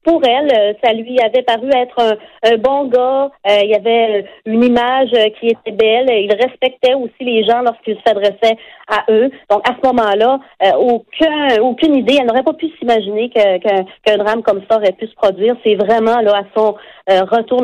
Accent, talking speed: Canadian, 200 wpm